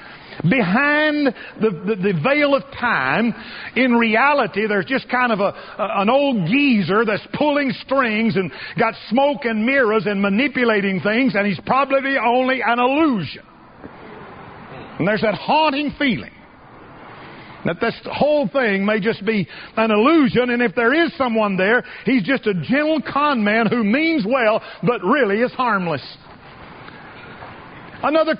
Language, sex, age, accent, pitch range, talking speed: English, male, 50-69, American, 210-270 Hz, 145 wpm